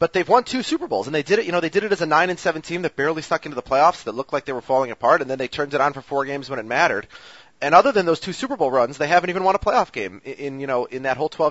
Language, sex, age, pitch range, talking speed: English, male, 30-49, 120-155 Hz, 345 wpm